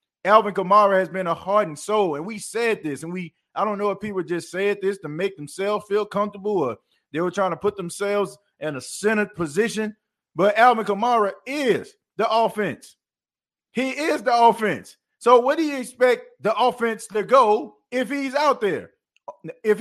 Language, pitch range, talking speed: English, 155-215 Hz, 190 wpm